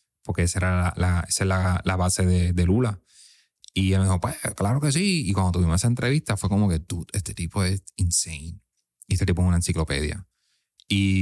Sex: male